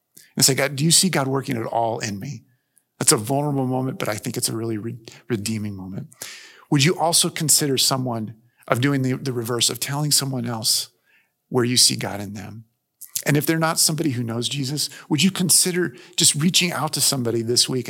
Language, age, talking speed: English, 50-69, 210 wpm